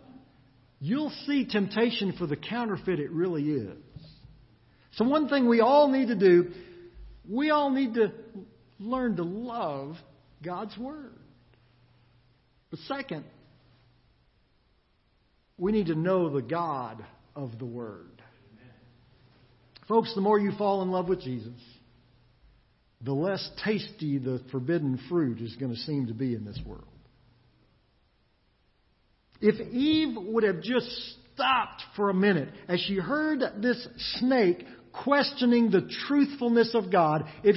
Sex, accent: male, American